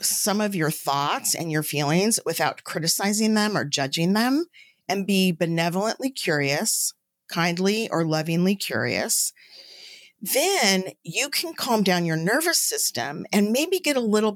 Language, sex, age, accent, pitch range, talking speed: English, female, 40-59, American, 160-205 Hz, 140 wpm